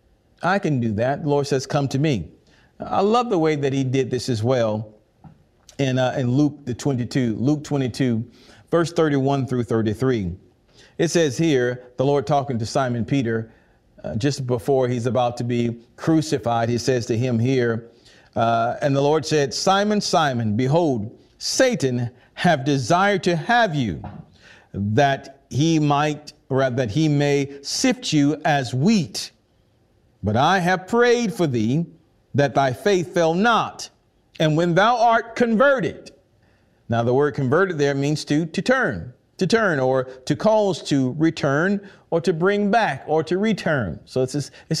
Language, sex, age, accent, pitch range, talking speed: English, male, 40-59, American, 130-185 Hz, 165 wpm